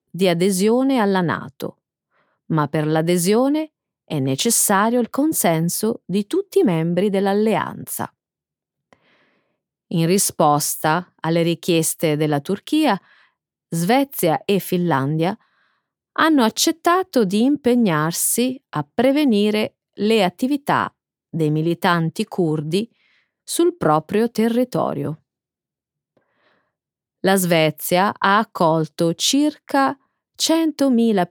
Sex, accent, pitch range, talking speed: female, native, 170-260 Hz, 90 wpm